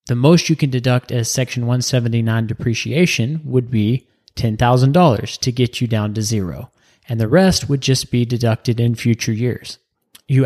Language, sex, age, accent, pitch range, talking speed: English, male, 30-49, American, 115-145 Hz, 165 wpm